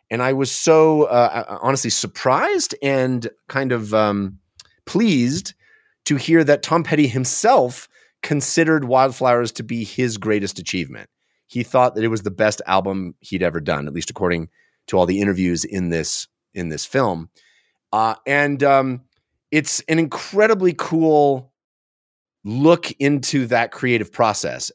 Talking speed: 145 wpm